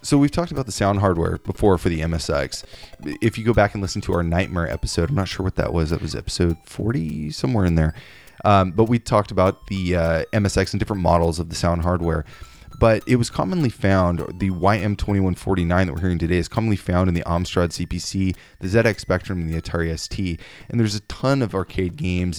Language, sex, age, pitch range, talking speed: English, male, 20-39, 85-105 Hz, 215 wpm